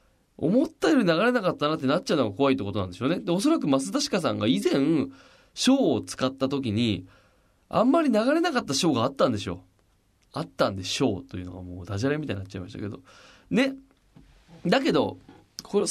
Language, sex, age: Japanese, male, 20-39